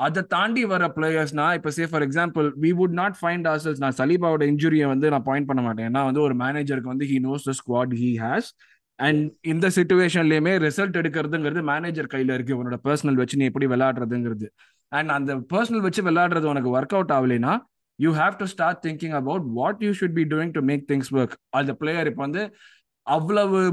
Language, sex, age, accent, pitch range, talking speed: Tamil, male, 20-39, native, 135-175 Hz, 160 wpm